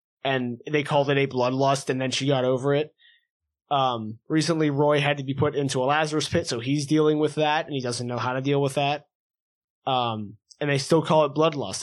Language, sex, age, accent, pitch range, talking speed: English, male, 20-39, American, 130-155 Hz, 225 wpm